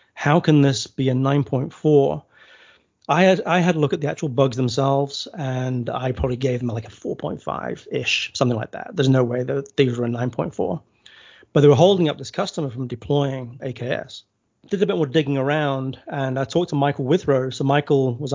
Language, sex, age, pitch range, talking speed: English, male, 30-49, 130-155 Hz, 195 wpm